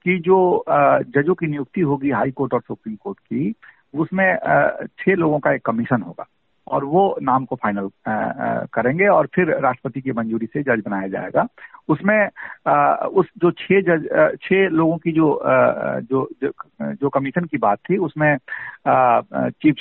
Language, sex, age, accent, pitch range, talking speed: Hindi, male, 50-69, native, 125-180 Hz, 150 wpm